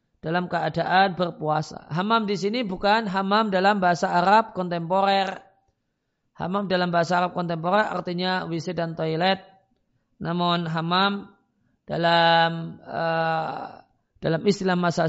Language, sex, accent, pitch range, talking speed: Indonesian, male, native, 165-190 Hz, 110 wpm